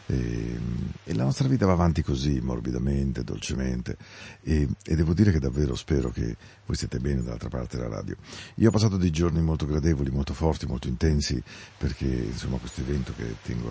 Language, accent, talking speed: Spanish, Italian, 185 wpm